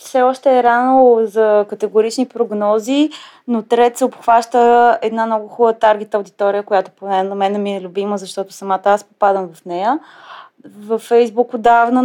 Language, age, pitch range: Bulgarian, 20-39, 190-230 Hz